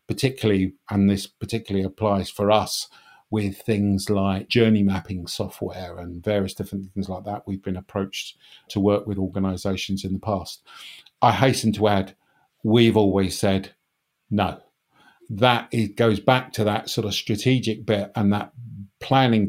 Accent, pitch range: British, 100-110 Hz